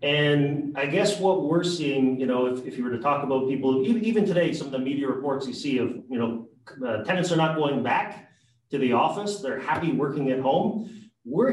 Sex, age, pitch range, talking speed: male, 40-59, 130-165 Hz, 225 wpm